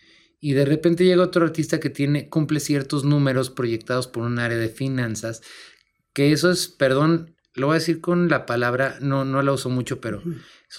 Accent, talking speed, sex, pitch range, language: Mexican, 190 wpm, male, 120-155 Hz, Spanish